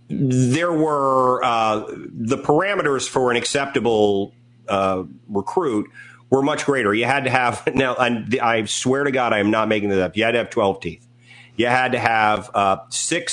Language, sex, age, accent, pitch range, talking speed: English, male, 40-59, American, 105-125 Hz, 185 wpm